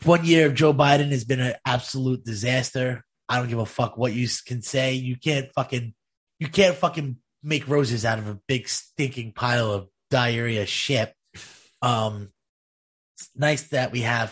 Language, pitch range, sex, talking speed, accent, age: English, 110-150 Hz, male, 175 wpm, American, 20-39